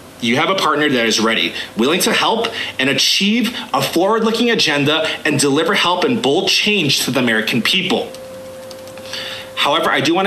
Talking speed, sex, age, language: 175 wpm, male, 30-49, English